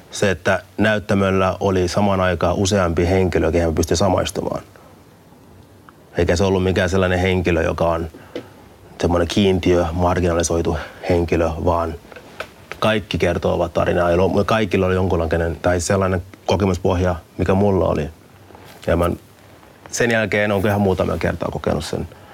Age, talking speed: 30-49, 125 wpm